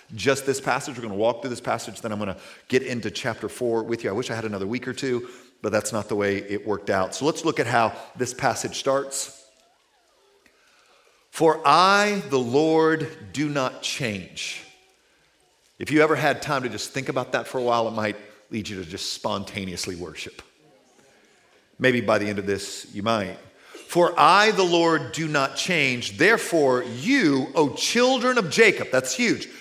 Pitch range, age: 130-215 Hz, 40-59